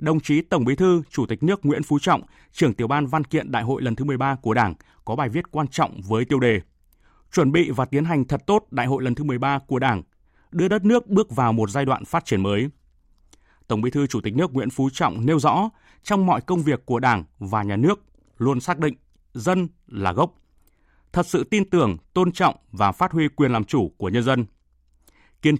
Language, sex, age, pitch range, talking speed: Vietnamese, male, 30-49, 105-160 Hz, 230 wpm